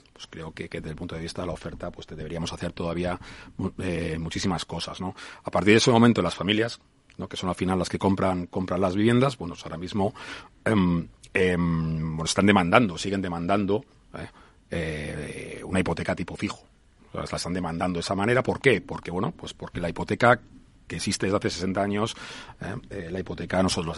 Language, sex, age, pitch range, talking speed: Spanish, male, 40-59, 85-105 Hz, 205 wpm